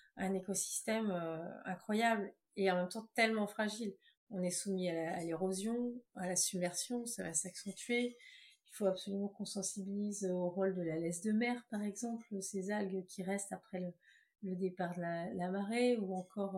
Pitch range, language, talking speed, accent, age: 190-230 Hz, French, 185 wpm, French, 30-49